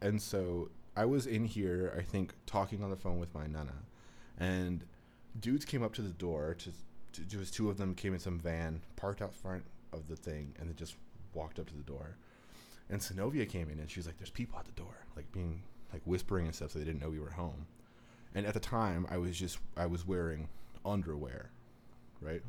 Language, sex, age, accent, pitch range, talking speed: English, male, 30-49, American, 85-105 Hz, 220 wpm